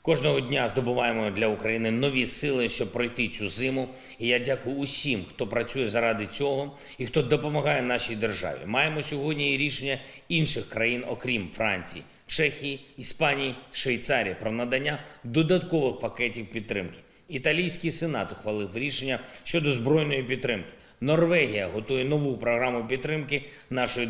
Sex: male